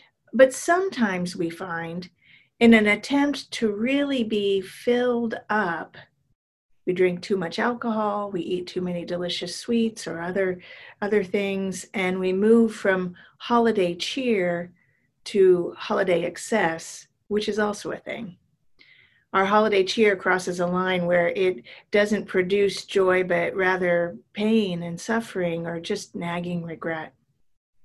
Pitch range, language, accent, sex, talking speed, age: 180-230 Hz, English, American, female, 130 wpm, 40-59